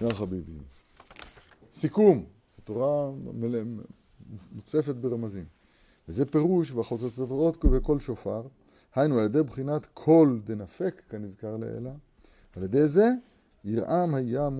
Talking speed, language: 95 wpm, Hebrew